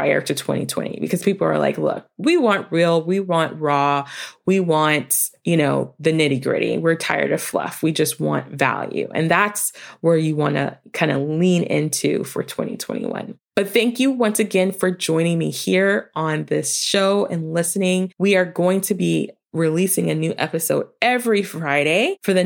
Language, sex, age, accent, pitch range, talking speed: English, female, 20-39, American, 160-220 Hz, 180 wpm